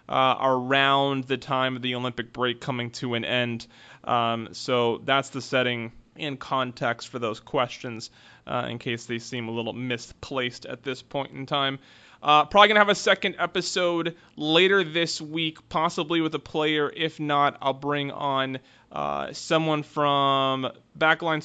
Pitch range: 120-160 Hz